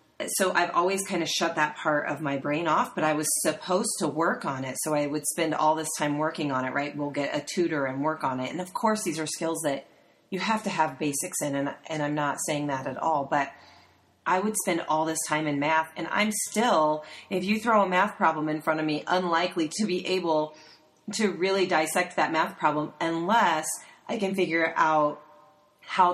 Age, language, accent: 30-49, English, American